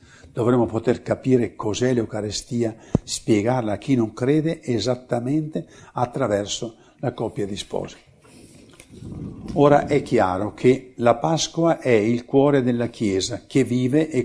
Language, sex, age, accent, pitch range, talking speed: Italian, male, 60-79, native, 115-160 Hz, 125 wpm